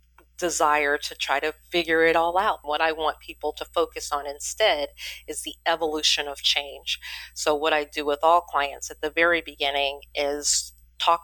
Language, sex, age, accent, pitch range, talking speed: English, female, 40-59, American, 140-160 Hz, 180 wpm